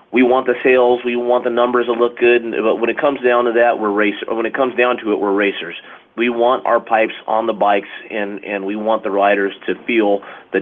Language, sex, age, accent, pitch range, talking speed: English, male, 30-49, American, 105-125 Hz, 250 wpm